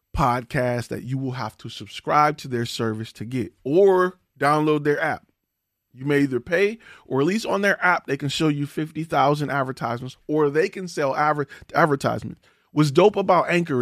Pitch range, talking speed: 130-175 Hz, 185 wpm